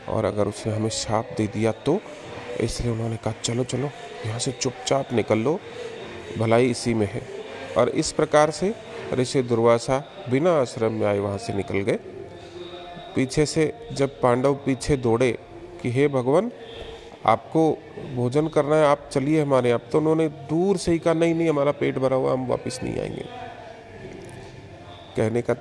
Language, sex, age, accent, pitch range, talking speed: Hindi, male, 40-59, native, 110-140 Hz, 165 wpm